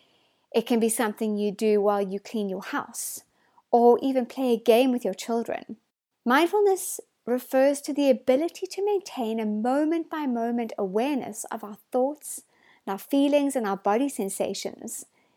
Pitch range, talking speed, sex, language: 225-280 Hz, 150 wpm, female, English